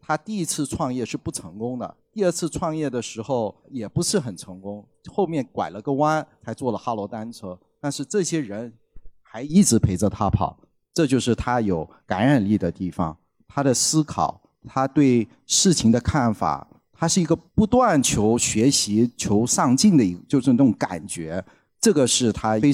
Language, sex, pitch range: Chinese, male, 100-150 Hz